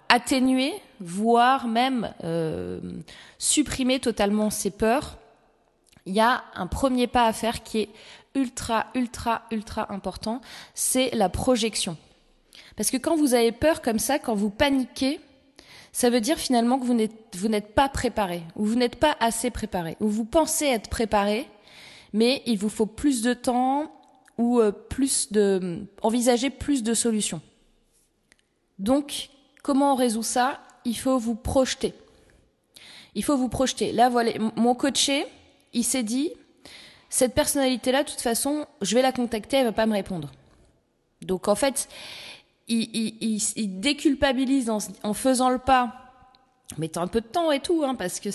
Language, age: French, 20-39